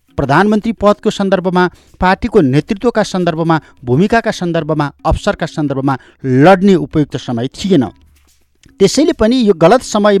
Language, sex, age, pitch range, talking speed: English, male, 60-79, 145-210 Hz, 160 wpm